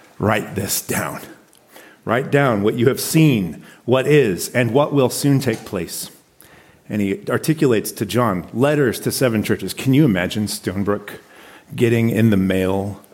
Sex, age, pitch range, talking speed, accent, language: male, 40-59, 95-130 Hz, 155 wpm, American, English